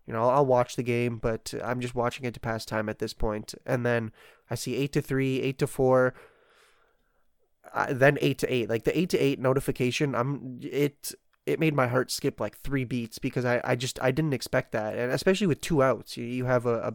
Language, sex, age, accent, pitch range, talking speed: English, male, 20-39, American, 120-140 Hz, 230 wpm